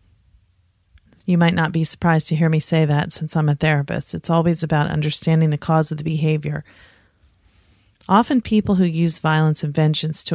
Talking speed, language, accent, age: 180 wpm, English, American, 40-59